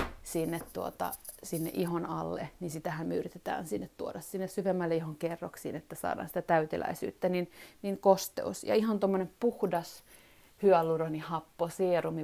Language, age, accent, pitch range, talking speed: Finnish, 30-49, native, 160-185 Hz, 125 wpm